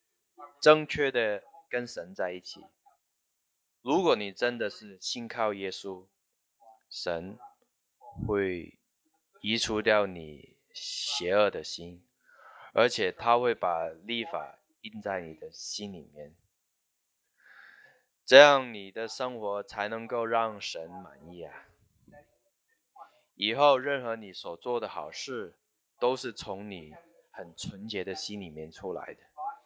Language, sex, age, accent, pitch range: English, male, 20-39, Chinese, 100-155 Hz